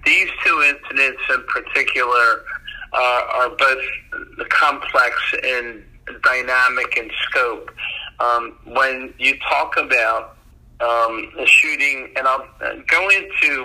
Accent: American